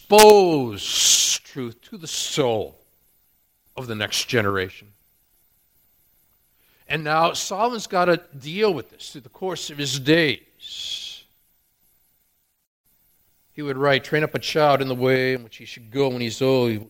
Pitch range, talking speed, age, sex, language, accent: 95-160 Hz, 150 wpm, 50-69, male, English, American